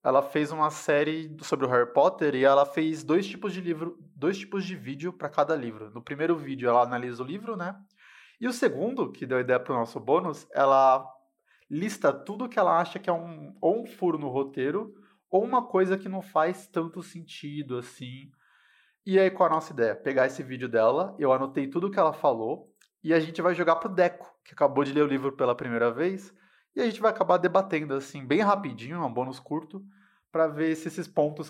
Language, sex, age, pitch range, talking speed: Portuguese, male, 20-39, 135-190 Hz, 215 wpm